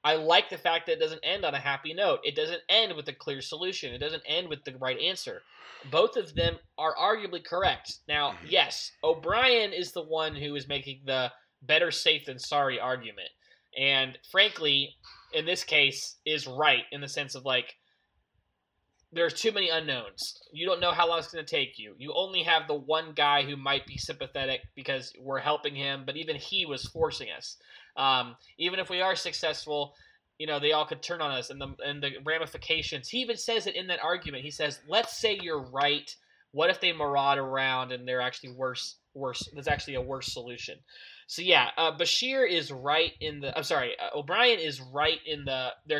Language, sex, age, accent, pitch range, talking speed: English, male, 20-39, American, 135-175 Hz, 205 wpm